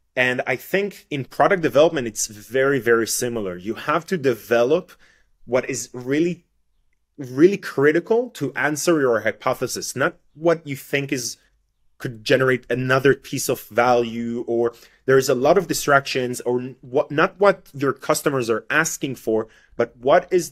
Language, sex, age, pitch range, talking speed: English, male, 30-49, 115-150 Hz, 155 wpm